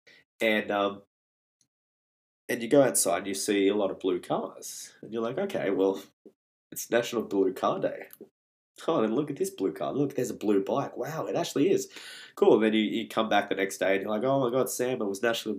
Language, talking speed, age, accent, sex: English, 230 wpm, 20-39, Australian, male